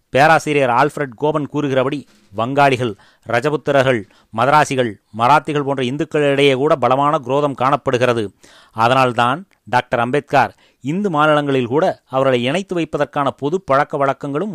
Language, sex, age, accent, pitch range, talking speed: Tamil, male, 30-49, native, 120-145 Hz, 105 wpm